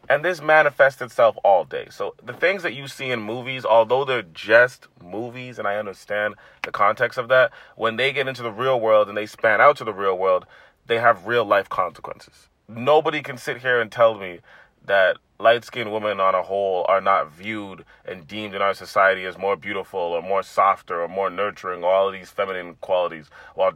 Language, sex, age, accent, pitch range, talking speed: English, male, 30-49, American, 100-135 Hz, 200 wpm